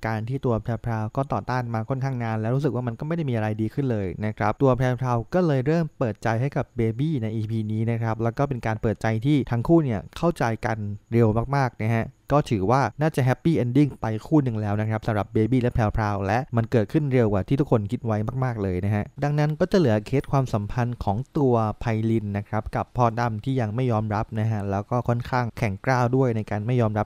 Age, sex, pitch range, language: 20-39, male, 105-130 Hz, English